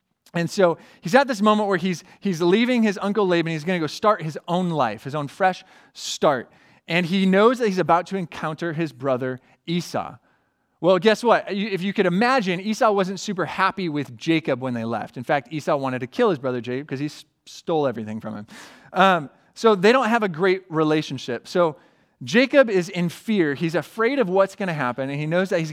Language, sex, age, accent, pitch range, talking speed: English, male, 30-49, American, 150-195 Hz, 215 wpm